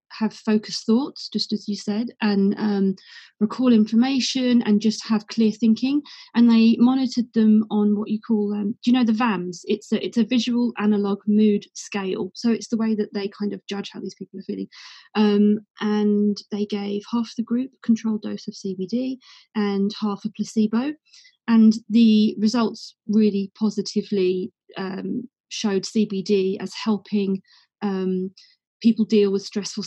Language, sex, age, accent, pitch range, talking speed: English, female, 30-49, British, 200-225 Hz, 165 wpm